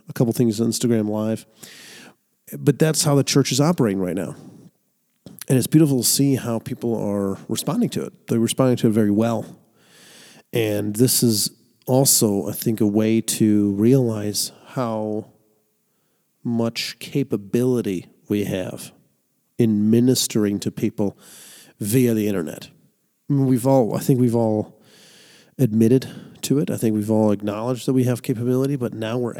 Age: 40-59